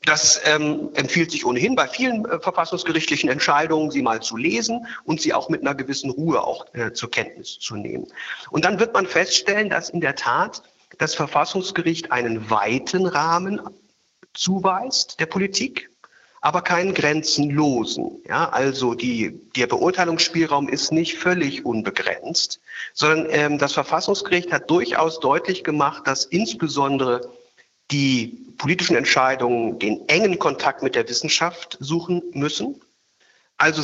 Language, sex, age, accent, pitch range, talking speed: German, male, 50-69, German, 135-180 Hz, 140 wpm